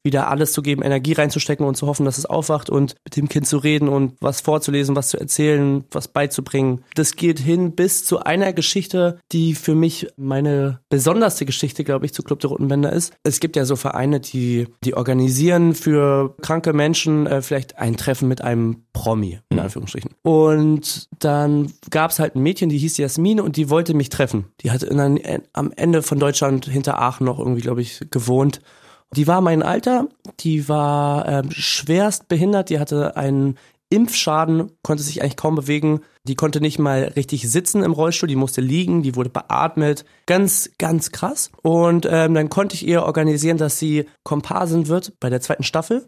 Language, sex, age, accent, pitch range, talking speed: German, male, 20-39, German, 140-165 Hz, 190 wpm